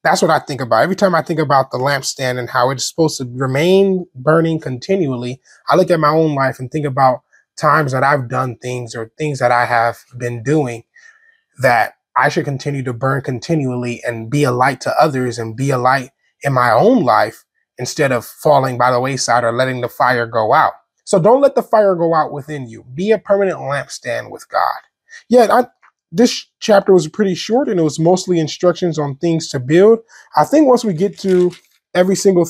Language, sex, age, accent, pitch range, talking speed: English, male, 20-39, American, 130-180 Hz, 210 wpm